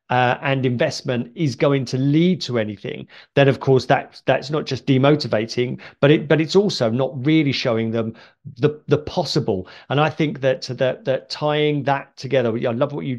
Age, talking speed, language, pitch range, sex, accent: 40-59, 190 wpm, English, 125-150 Hz, male, British